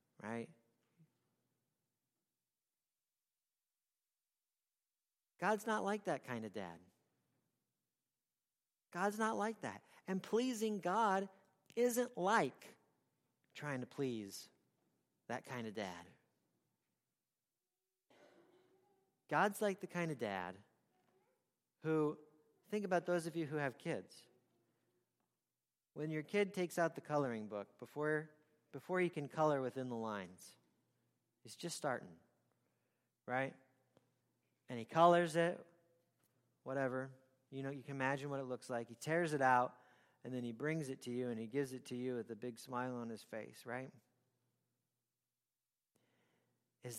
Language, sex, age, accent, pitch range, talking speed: English, male, 40-59, American, 120-170 Hz, 125 wpm